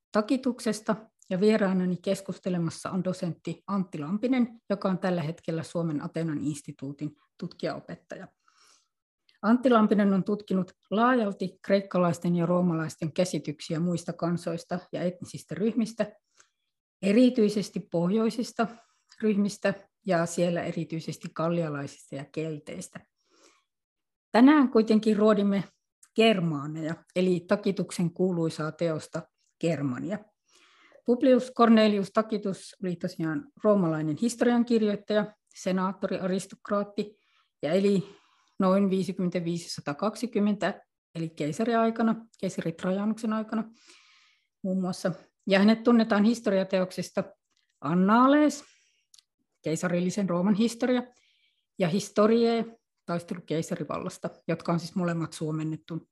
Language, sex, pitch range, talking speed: Finnish, female, 170-220 Hz, 90 wpm